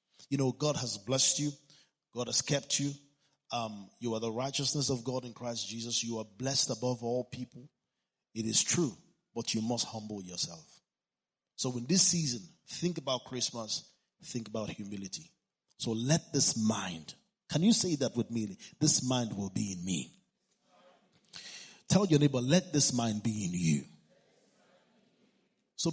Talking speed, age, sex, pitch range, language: 160 wpm, 30-49, male, 115-155 Hz, English